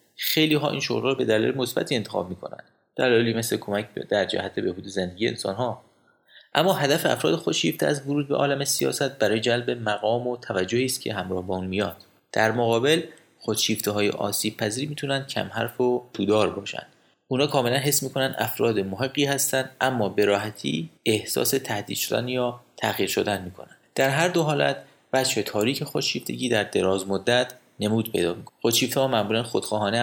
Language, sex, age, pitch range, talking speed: Persian, male, 30-49, 105-135 Hz, 160 wpm